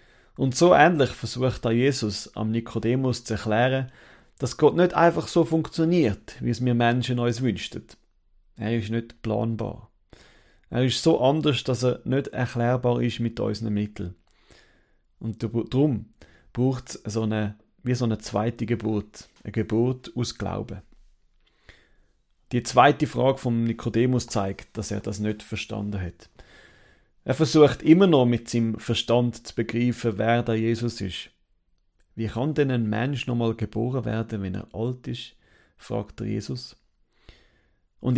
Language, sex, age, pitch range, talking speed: German, male, 40-59, 110-125 Hz, 150 wpm